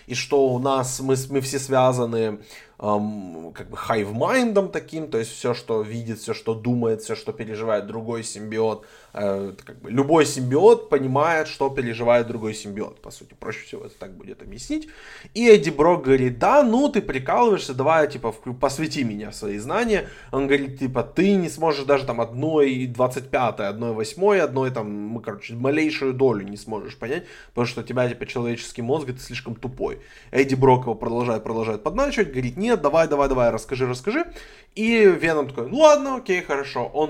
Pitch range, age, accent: 115-155 Hz, 20-39, native